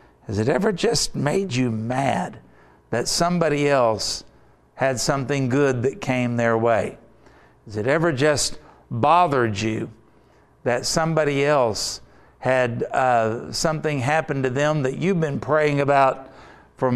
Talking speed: 135 wpm